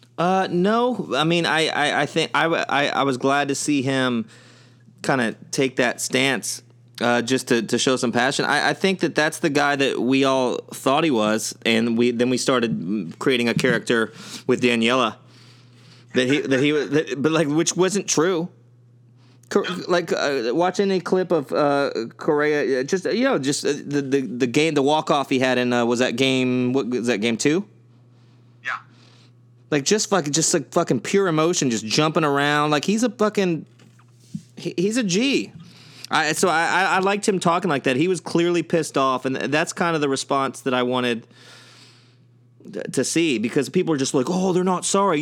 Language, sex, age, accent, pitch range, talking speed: English, male, 30-49, American, 125-175 Hz, 190 wpm